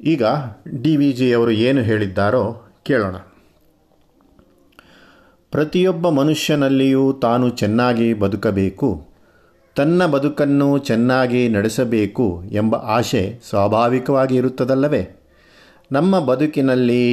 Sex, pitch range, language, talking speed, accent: male, 115-145 Hz, Kannada, 80 wpm, native